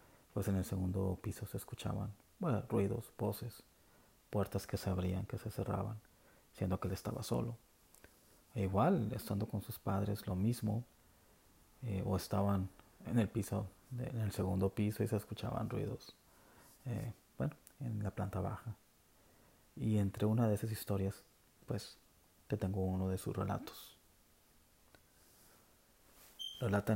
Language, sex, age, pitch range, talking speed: Spanish, male, 30-49, 95-110 Hz, 145 wpm